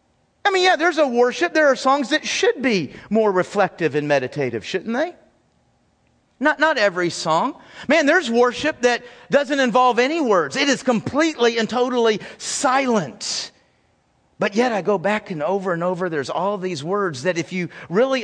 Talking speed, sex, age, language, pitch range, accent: 175 wpm, male, 40-59, English, 195-250 Hz, American